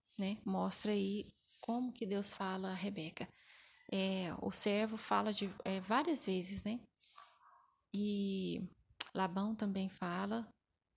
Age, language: 20-39, Portuguese